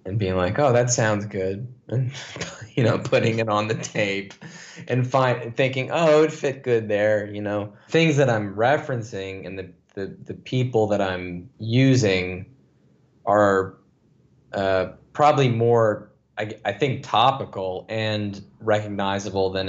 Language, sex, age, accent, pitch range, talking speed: English, male, 20-39, American, 95-120 Hz, 150 wpm